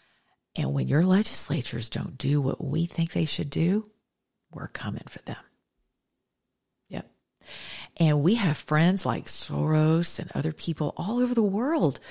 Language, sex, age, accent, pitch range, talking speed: English, female, 40-59, American, 135-170 Hz, 150 wpm